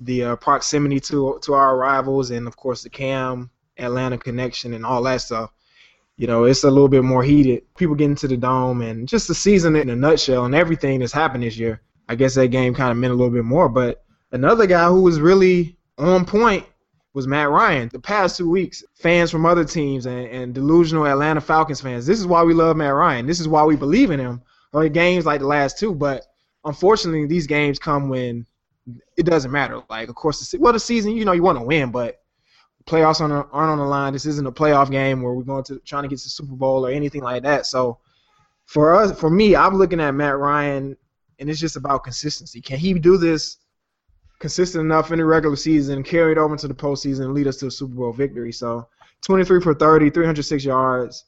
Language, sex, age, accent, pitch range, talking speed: English, male, 20-39, American, 130-160 Hz, 230 wpm